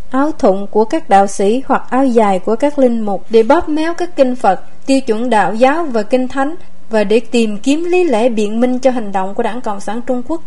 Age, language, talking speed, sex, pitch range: 20-39, Vietnamese, 245 wpm, female, 215-270 Hz